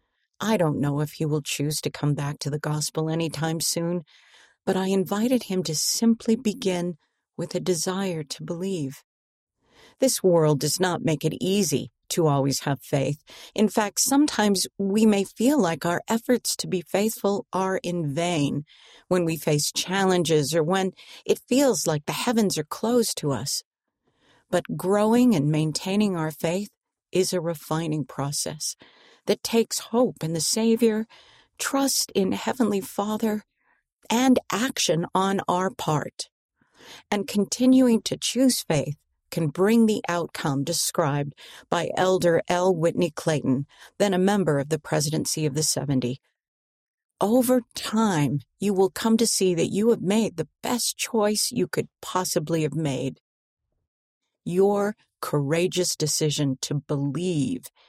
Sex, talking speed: female, 145 wpm